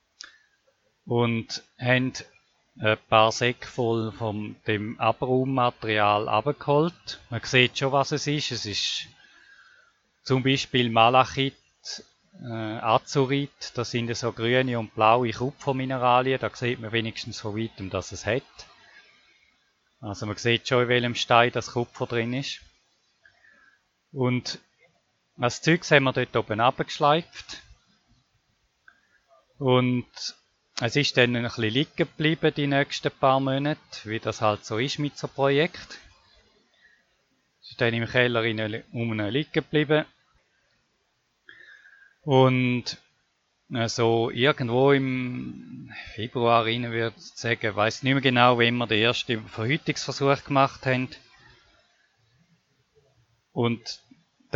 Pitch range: 115-140 Hz